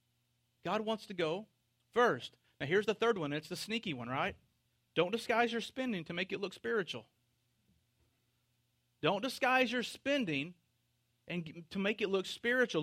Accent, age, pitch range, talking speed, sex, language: American, 40-59, 160-250 Hz, 160 wpm, male, English